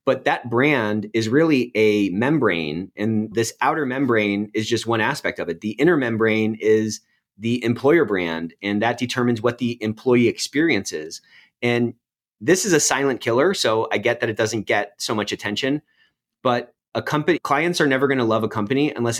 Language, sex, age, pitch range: English, male, 30-49, 110-130 Hz